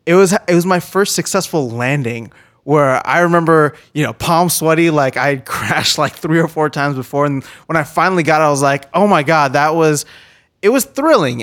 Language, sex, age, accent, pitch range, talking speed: English, male, 20-39, American, 135-165 Hz, 215 wpm